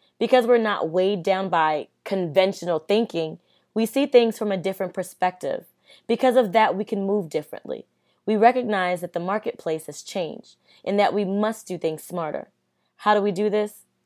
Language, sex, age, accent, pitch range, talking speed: English, female, 20-39, American, 180-220 Hz, 175 wpm